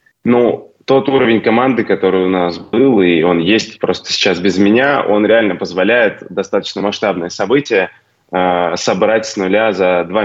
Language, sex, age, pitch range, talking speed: Russian, male, 20-39, 95-110 Hz, 160 wpm